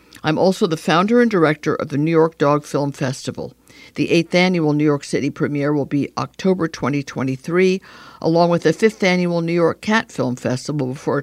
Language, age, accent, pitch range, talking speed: English, 60-79, American, 140-180 Hz, 185 wpm